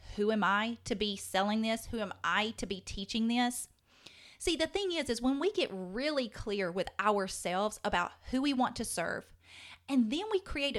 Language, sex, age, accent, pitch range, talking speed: English, female, 30-49, American, 190-255 Hz, 200 wpm